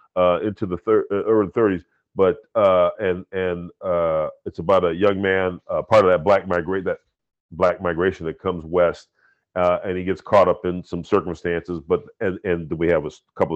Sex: male